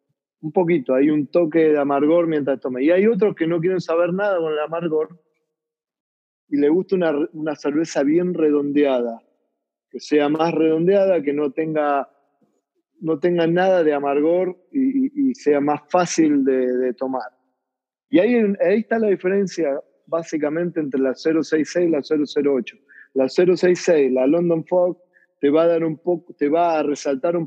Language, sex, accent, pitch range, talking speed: Spanish, male, Argentinian, 140-170 Hz, 170 wpm